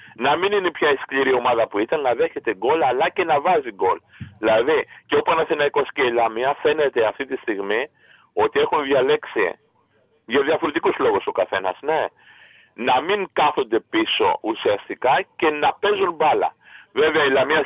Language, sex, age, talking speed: Greek, male, 50-69, 165 wpm